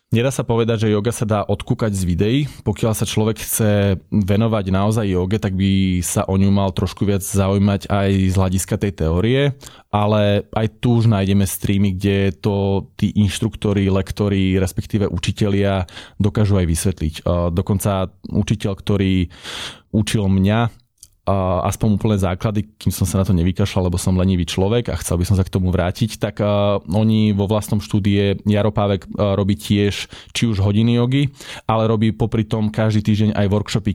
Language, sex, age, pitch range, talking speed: Slovak, male, 20-39, 95-115 Hz, 165 wpm